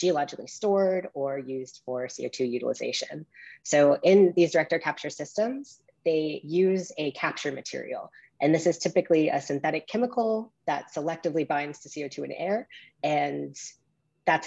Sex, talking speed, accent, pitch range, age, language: female, 140 wpm, American, 135-175 Hz, 30-49, English